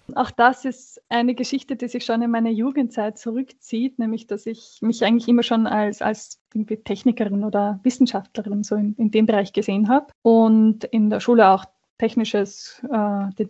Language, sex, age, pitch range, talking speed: German, female, 20-39, 215-245 Hz, 170 wpm